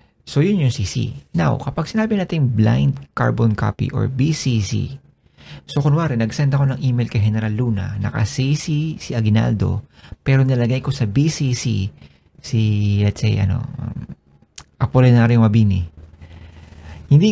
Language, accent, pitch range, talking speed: Filipino, native, 110-140 Hz, 130 wpm